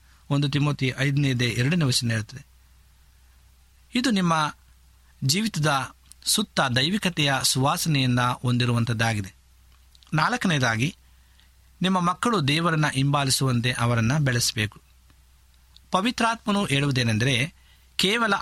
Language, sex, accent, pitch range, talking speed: Kannada, male, native, 110-160 Hz, 75 wpm